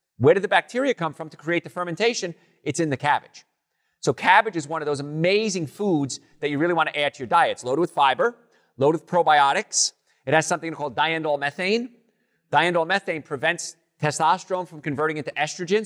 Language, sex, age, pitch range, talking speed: English, male, 40-59, 135-185 Hz, 195 wpm